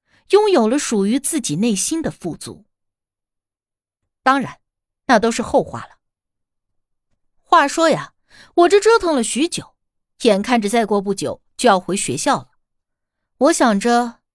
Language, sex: Chinese, female